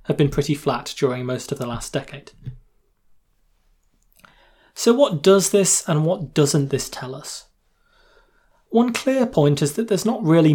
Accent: British